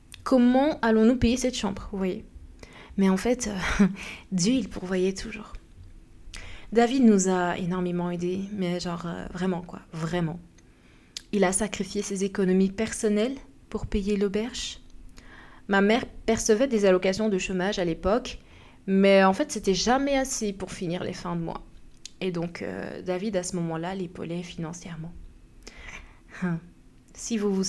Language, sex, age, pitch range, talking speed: French, female, 20-39, 185-215 Hz, 150 wpm